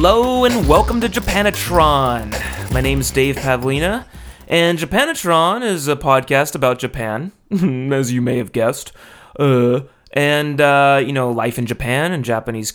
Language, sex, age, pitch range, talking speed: English, male, 30-49, 120-160 Hz, 150 wpm